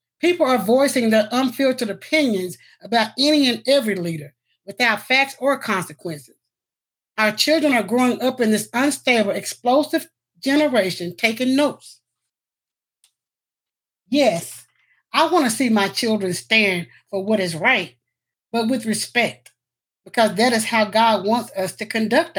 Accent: American